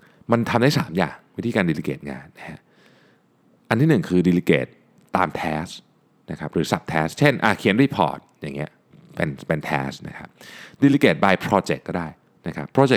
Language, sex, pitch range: Thai, male, 85-120 Hz